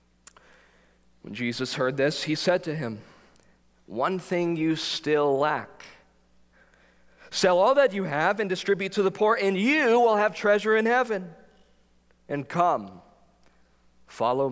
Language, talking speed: English, 135 wpm